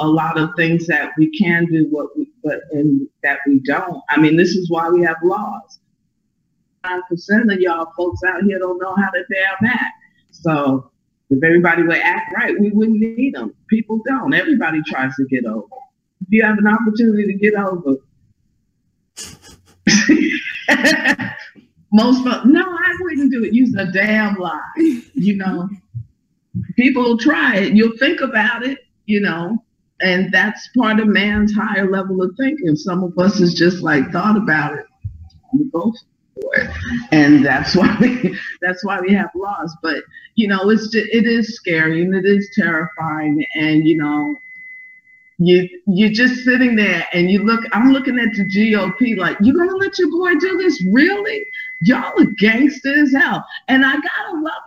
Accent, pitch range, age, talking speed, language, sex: American, 175-255 Hz, 50-69, 170 wpm, English, female